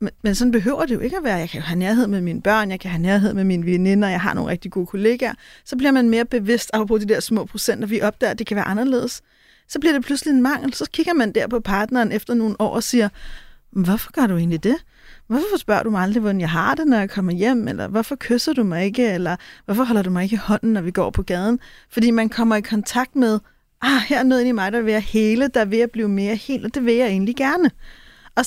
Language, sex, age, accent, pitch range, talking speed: Danish, female, 30-49, native, 205-250 Hz, 280 wpm